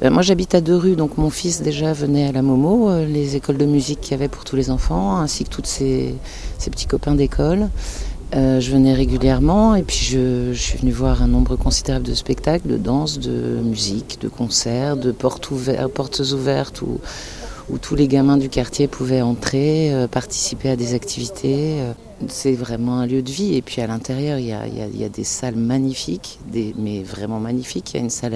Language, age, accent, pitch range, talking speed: French, 50-69, French, 125-145 Hz, 215 wpm